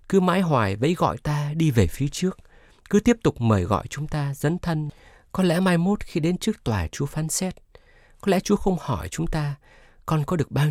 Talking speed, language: 230 wpm, Vietnamese